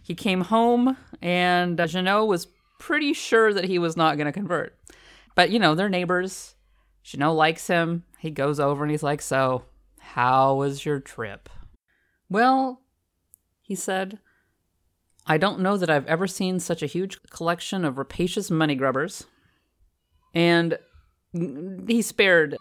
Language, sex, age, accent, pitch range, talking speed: English, female, 30-49, American, 150-205 Hz, 150 wpm